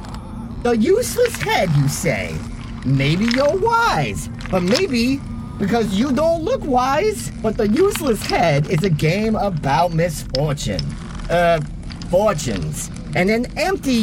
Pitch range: 160-270 Hz